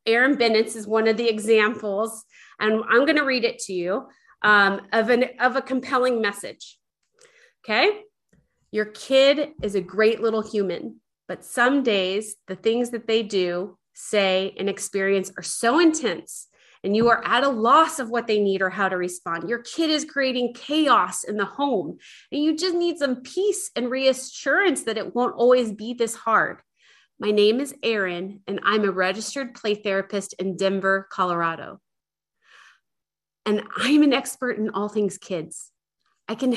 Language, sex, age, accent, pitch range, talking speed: English, female, 30-49, American, 195-250 Hz, 170 wpm